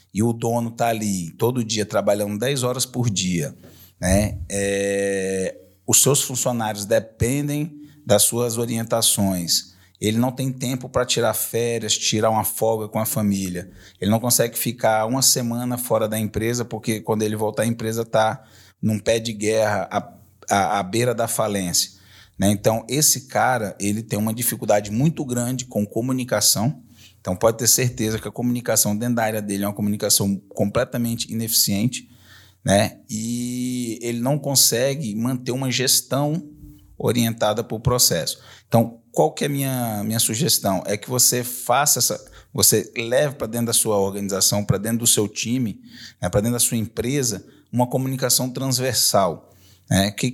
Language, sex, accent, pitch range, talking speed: Portuguese, male, Brazilian, 105-125 Hz, 160 wpm